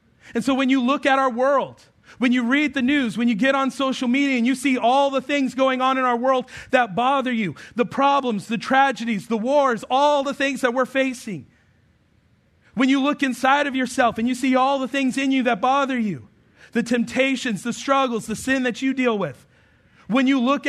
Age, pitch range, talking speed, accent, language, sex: 40-59, 175-265 Hz, 220 wpm, American, English, male